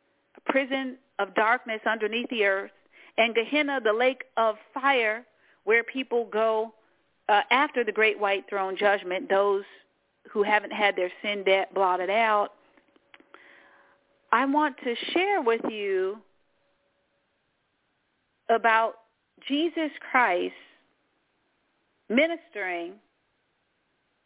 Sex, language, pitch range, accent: female, English, 205-290 Hz, American